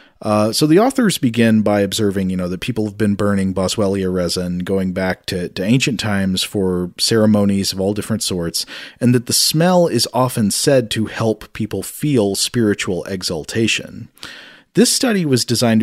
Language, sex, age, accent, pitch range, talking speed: English, male, 40-59, American, 100-130 Hz, 170 wpm